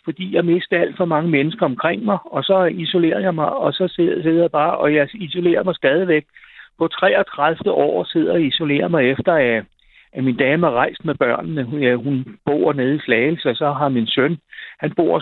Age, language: 60-79, Danish